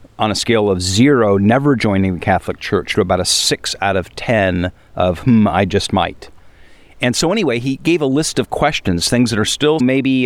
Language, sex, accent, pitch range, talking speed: English, male, American, 95-120 Hz, 210 wpm